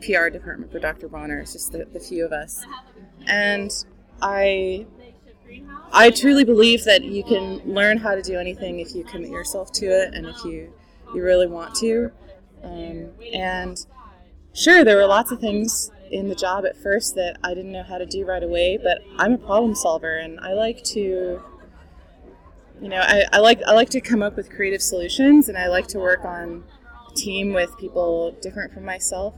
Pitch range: 175-215 Hz